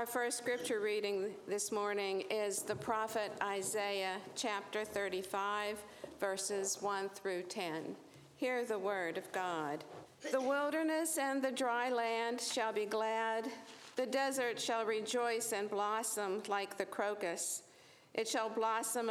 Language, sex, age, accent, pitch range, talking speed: English, female, 50-69, American, 200-240 Hz, 130 wpm